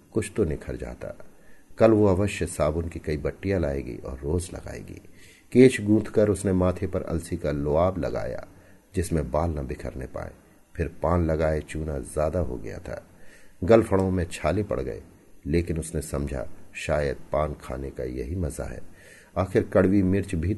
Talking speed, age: 165 wpm, 50-69